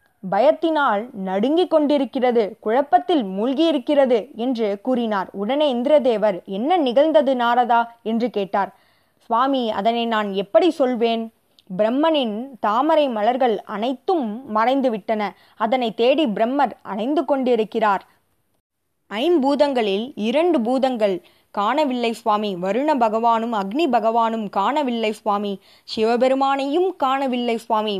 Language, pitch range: Tamil, 205-265 Hz